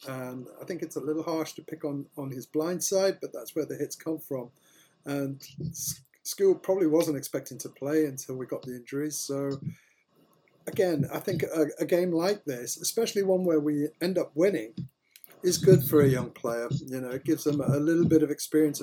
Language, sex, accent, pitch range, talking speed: English, male, British, 140-175 Hz, 205 wpm